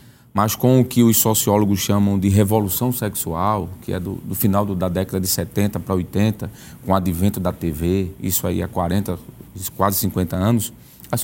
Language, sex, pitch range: Portuguese, male, 100-125 Hz